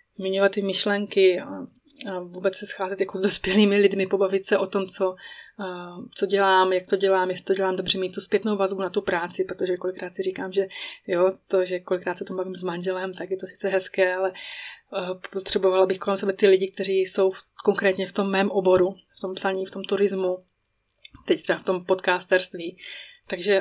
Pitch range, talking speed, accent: 185-200 Hz, 205 wpm, native